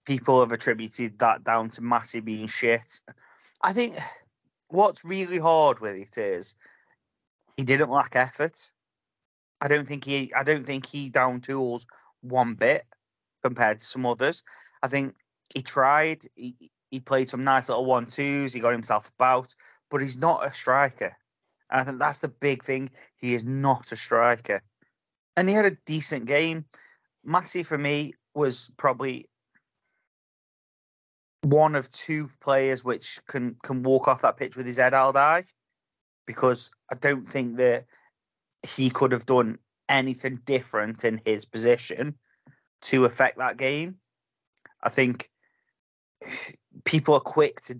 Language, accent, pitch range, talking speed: English, British, 120-145 Hz, 150 wpm